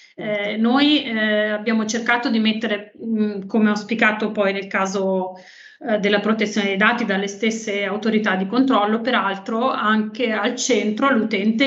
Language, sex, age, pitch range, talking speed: Italian, female, 30-49, 205-235 Hz, 150 wpm